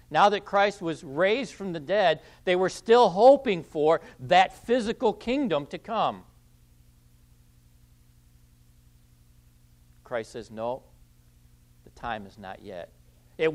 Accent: American